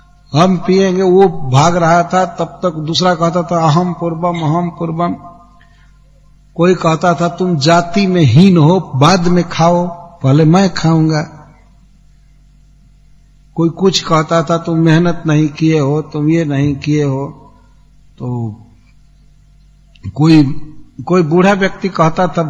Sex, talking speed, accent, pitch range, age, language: male, 140 wpm, Indian, 140-170 Hz, 60-79, English